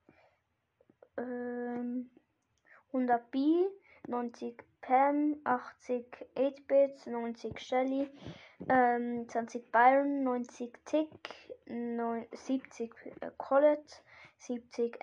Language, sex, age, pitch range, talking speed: German, female, 10-29, 235-275 Hz, 70 wpm